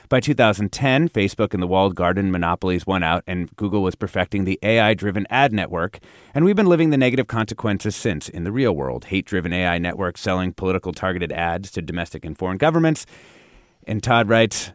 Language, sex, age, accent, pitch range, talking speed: English, male, 30-49, American, 90-125 Hz, 180 wpm